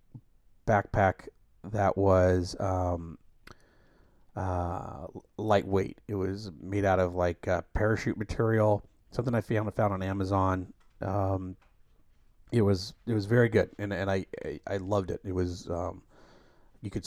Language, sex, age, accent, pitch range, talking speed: English, male, 30-49, American, 90-105 Hz, 135 wpm